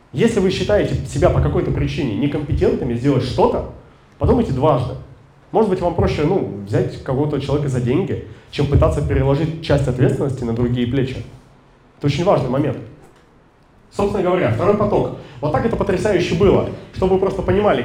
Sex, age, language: male, 30-49, Russian